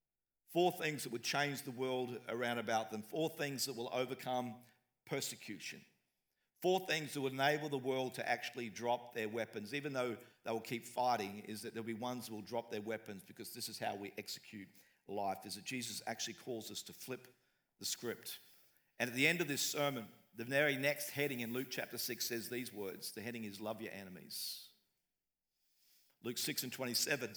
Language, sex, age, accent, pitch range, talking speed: English, male, 50-69, Australian, 120-150 Hz, 195 wpm